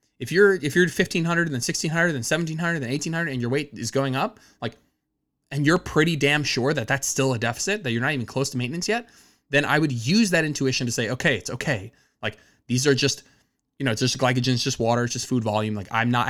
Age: 20-39